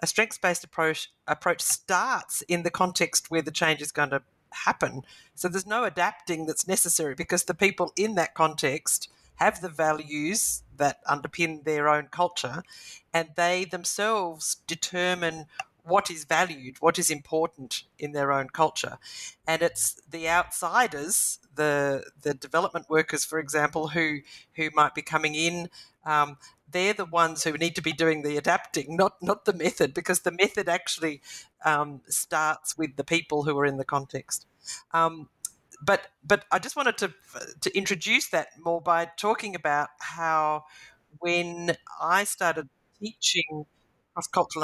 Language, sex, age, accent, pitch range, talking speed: English, female, 50-69, Australian, 150-175 Hz, 150 wpm